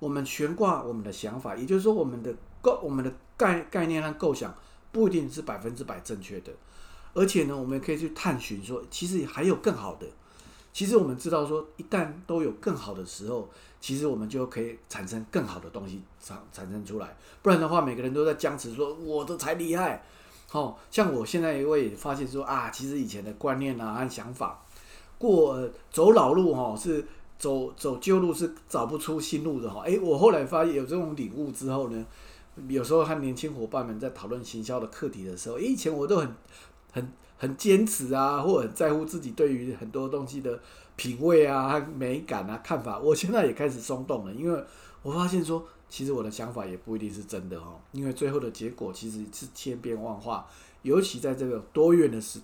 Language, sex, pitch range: English, male, 115-160 Hz